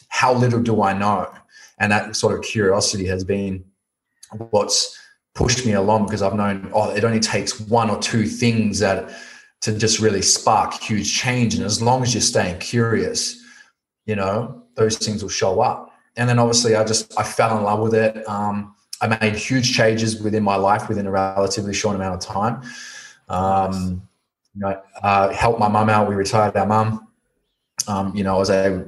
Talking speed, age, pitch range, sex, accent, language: 190 wpm, 20-39, 100-115 Hz, male, Australian, English